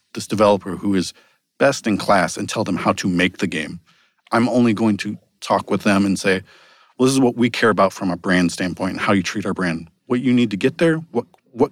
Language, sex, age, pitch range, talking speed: English, male, 40-59, 95-115 Hz, 250 wpm